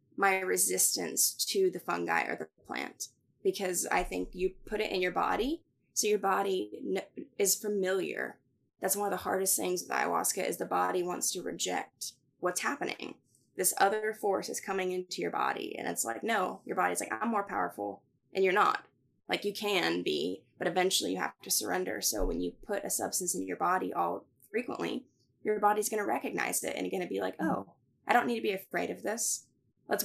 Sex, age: female, 20-39